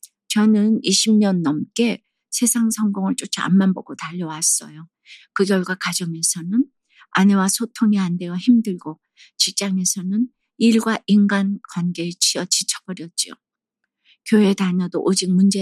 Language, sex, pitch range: Korean, female, 175-215 Hz